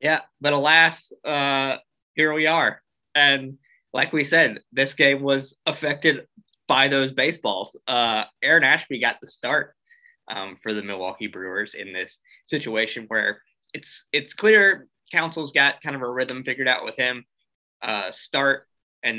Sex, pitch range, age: male, 115-140 Hz, 20-39